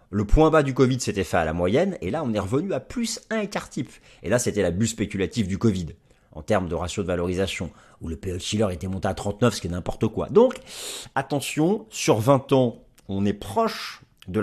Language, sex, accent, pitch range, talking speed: French, male, French, 95-125 Hz, 235 wpm